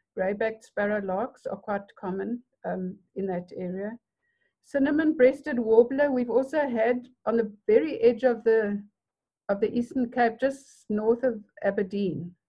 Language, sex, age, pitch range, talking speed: English, female, 60-79, 195-255 Hz, 140 wpm